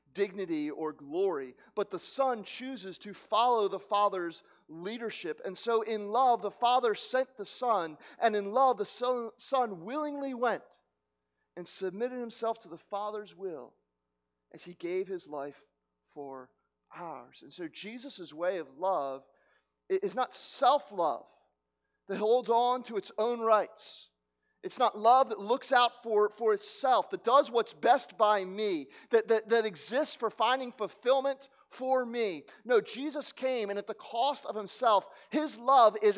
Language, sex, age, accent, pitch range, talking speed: English, male, 40-59, American, 145-240 Hz, 155 wpm